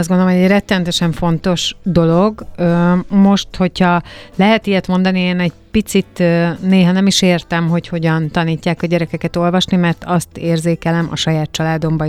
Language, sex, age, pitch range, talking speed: Hungarian, female, 30-49, 160-185 Hz, 155 wpm